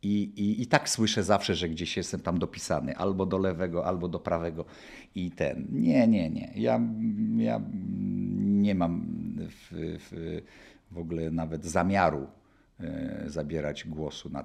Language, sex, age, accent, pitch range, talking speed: Polish, male, 50-69, native, 75-105 Hz, 140 wpm